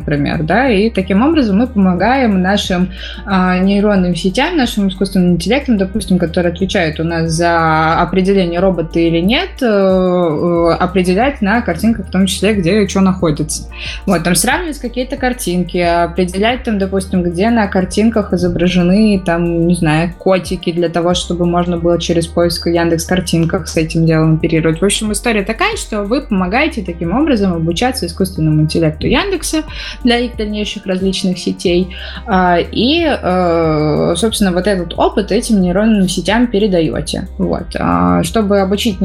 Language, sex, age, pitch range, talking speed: Russian, female, 20-39, 175-215 Hz, 145 wpm